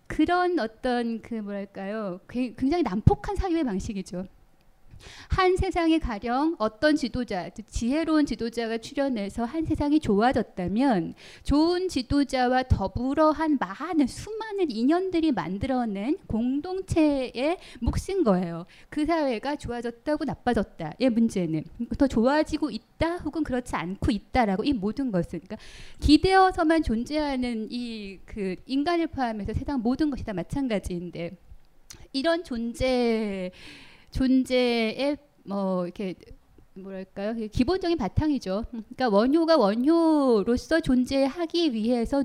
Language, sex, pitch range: Korean, female, 215-300 Hz